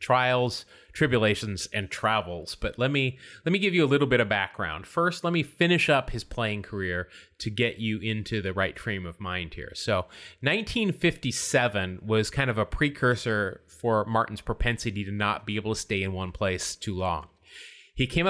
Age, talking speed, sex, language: 30-49, 185 wpm, male, English